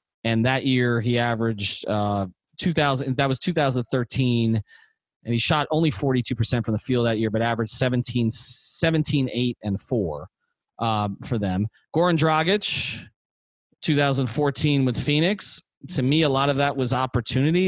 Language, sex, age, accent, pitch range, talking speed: English, male, 30-49, American, 120-145 Hz, 145 wpm